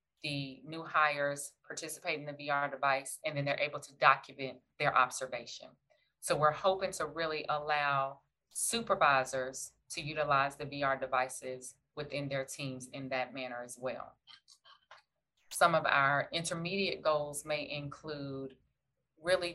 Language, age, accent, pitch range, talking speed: English, 30-49, American, 140-175 Hz, 135 wpm